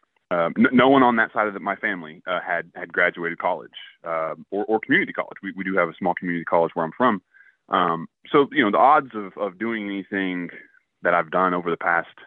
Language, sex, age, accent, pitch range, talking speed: English, male, 20-39, American, 85-110 Hz, 235 wpm